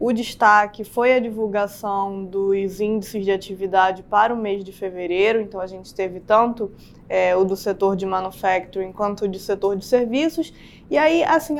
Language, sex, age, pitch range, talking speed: Portuguese, female, 20-39, 200-255 Hz, 170 wpm